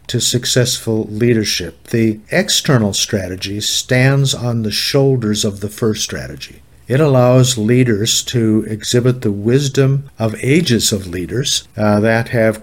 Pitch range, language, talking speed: 110-125 Hz, English, 135 wpm